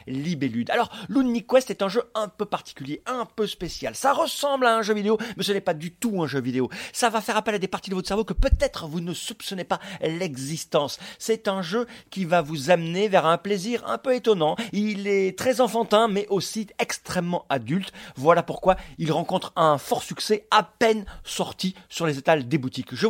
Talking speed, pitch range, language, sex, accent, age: 215 wpm, 150-220 Hz, French, male, French, 40-59